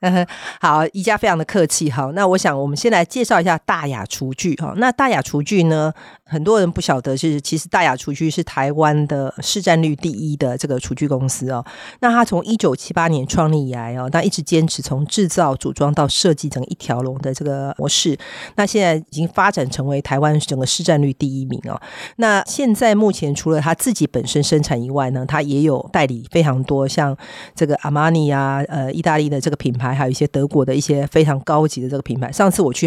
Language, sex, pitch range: Chinese, female, 140-170 Hz